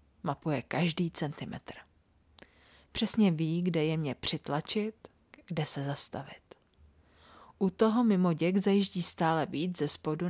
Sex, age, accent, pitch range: female, 30-49, native, 140-180 Hz